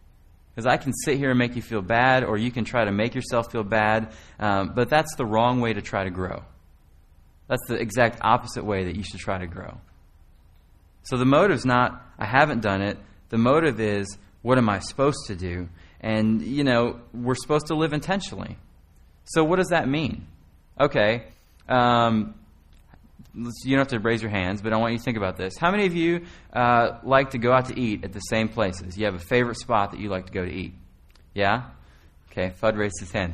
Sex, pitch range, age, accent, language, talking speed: male, 90-125 Hz, 30-49, American, English, 215 wpm